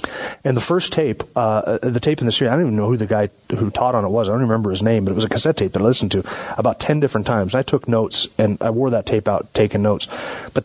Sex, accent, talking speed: male, American, 300 wpm